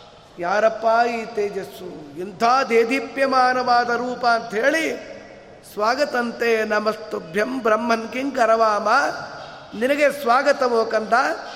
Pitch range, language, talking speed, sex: 225-275 Hz, Kannada, 80 wpm, male